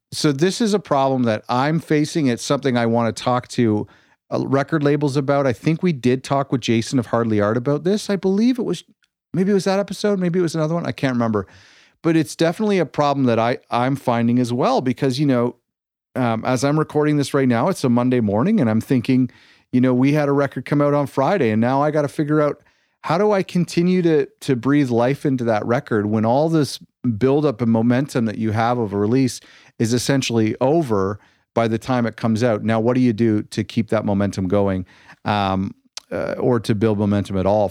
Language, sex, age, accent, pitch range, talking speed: English, male, 40-59, American, 110-145 Hz, 225 wpm